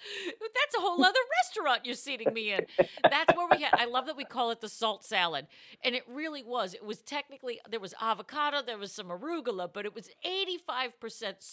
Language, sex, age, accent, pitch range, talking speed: English, female, 50-69, American, 215-315 Hz, 210 wpm